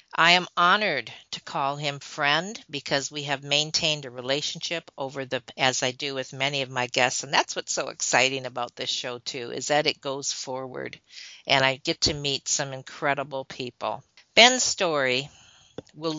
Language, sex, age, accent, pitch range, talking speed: English, female, 50-69, American, 130-155 Hz, 180 wpm